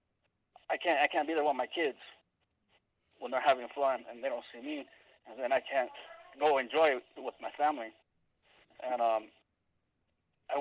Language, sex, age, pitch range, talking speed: English, male, 20-39, 125-145 Hz, 175 wpm